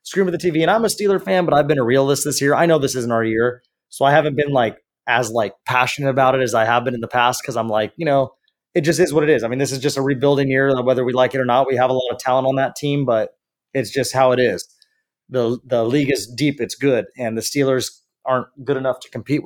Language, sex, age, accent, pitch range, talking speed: English, male, 20-39, American, 125-150 Hz, 290 wpm